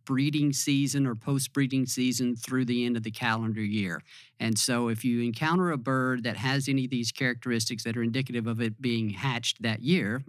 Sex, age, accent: male, 50-69, American